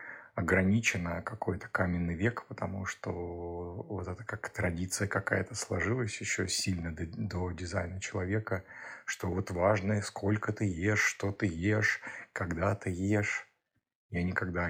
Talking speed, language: 130 wpm, Russian